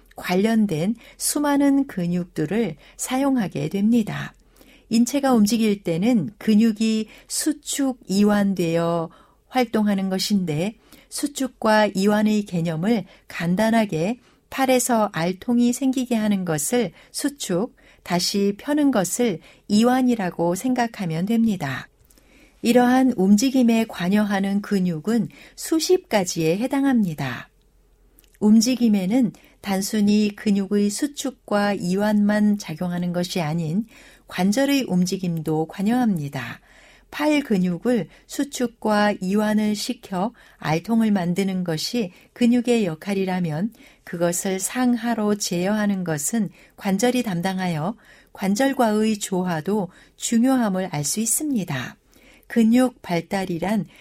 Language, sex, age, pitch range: Korean, female, 60-79, 180-240 Hz